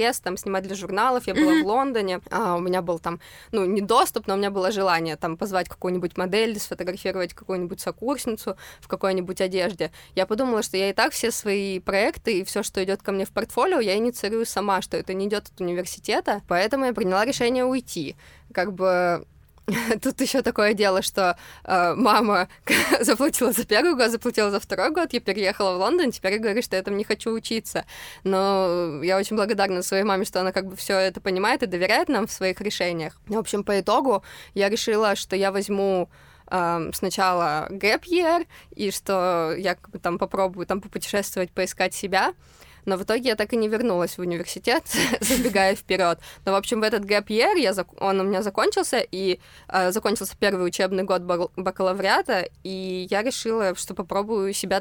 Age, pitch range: 20-39, 185-215 Hz